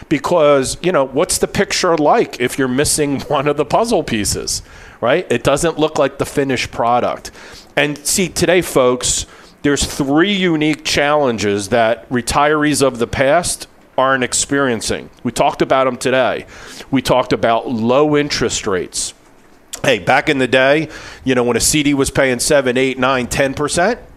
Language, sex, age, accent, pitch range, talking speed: English, male, 40-59, American, 125-155 Hz, 155 wpm